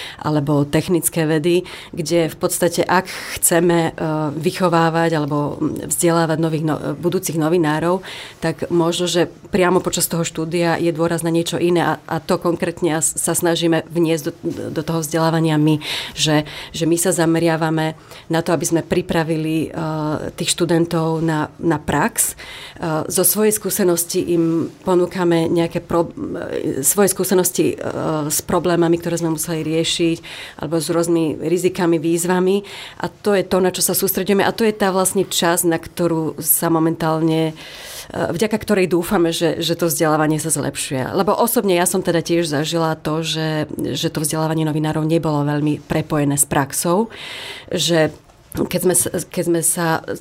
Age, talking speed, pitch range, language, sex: 30-49, 150 wpm, 160-175 Hz, Slovak, female